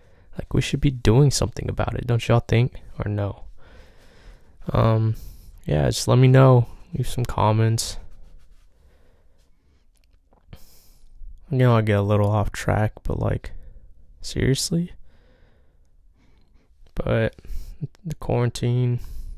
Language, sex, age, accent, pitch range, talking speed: English, male, 20-39, American, 90-115 Hz, 110 wpm